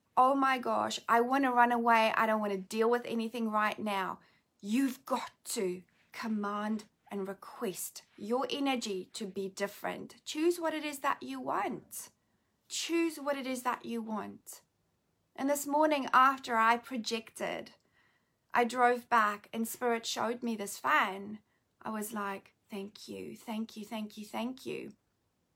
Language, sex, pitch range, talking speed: English, female, 205-255 Hz, 160 wpm